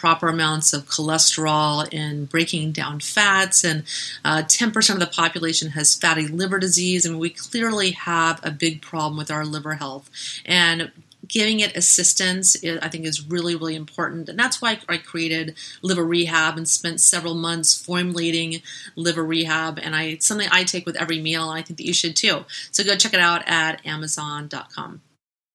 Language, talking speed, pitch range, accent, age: English, 175 wpm, 160-185 Hz, American, 30-49